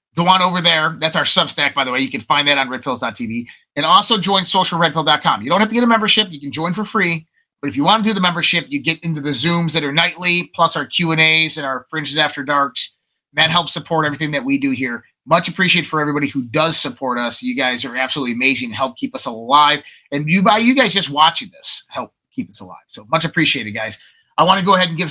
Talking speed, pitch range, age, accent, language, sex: 245 wpm, 140-180 Hz, 30-49, American, English, male